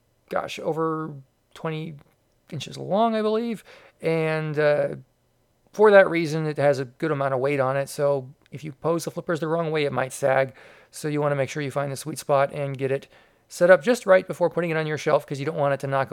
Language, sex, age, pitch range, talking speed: English, male, 40-59, 140-170 Hz, 240 wpm